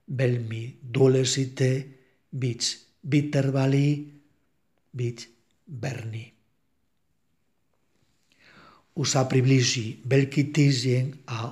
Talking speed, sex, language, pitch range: 50 wpm, male, Czech, 125-135 Hz